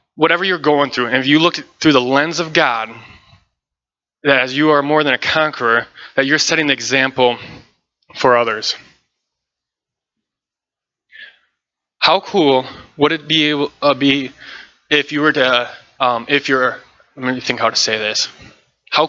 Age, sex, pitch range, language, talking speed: 20-39, male, 120-150 Hz, English, 155 wpm